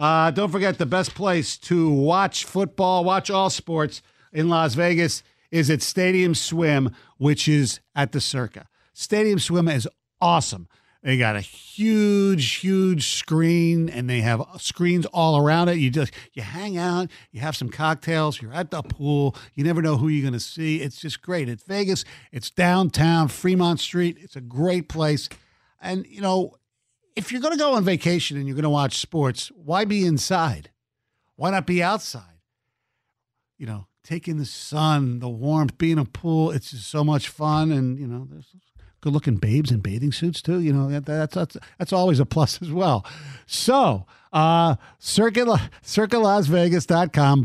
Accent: American